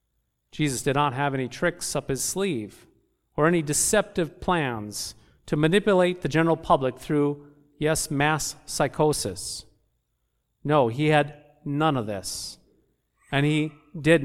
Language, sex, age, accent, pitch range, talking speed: English, male, 40-59, American, 140-185 Hz, 130 wpm